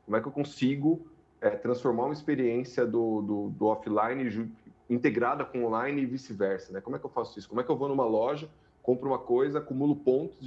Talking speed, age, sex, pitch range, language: 220 wpm, 30-49, male, 120-160 Hz, Portuguese